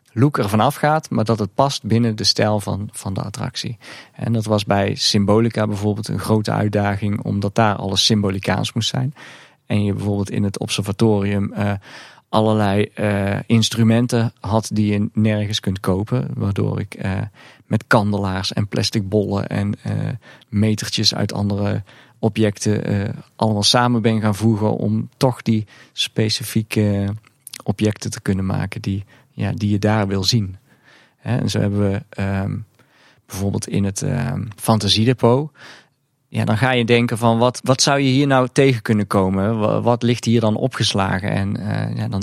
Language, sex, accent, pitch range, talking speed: Dutch, male, Dutch, 100-120 Hz, 165 wpm